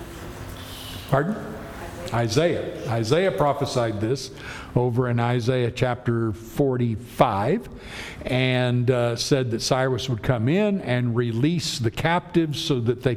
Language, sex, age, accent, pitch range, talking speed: English, male, 50-69, American, 120-155 Hz, 115 wpm